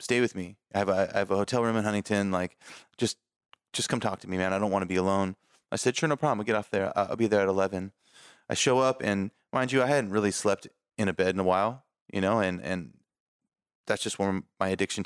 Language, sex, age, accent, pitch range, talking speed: English, male, 20-39, American, 95-120 Hz, 265 wpm